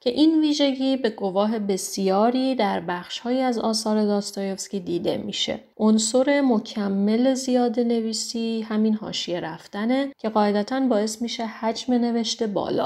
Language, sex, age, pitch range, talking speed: Persian, female, 30-49, 185-240 Hz, 125 wpm